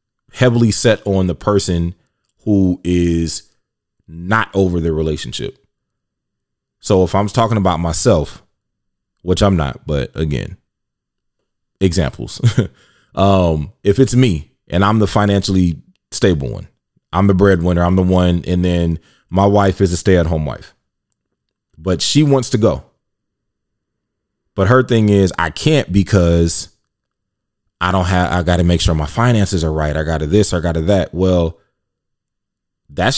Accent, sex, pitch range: American, male, 90-110 Hz